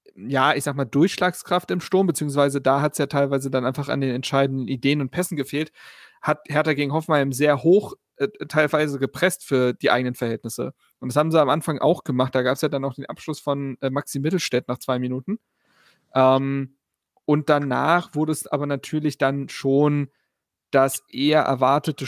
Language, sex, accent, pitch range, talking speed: German, male, German, 135-155 Hz, 190 wpm